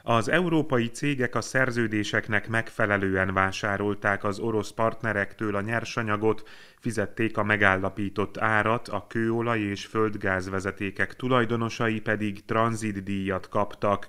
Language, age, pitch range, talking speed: Hungarian, 30-49, 100-115 Hz, 100 wpm